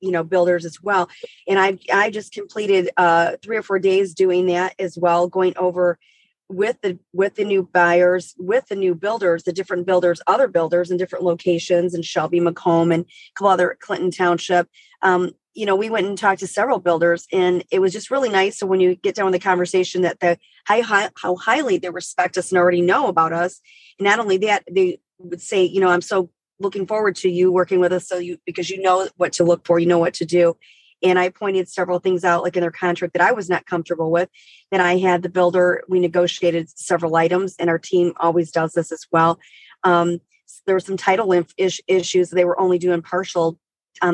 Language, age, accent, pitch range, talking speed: English, 40-59, American, 175-190 Hz, 220 wpm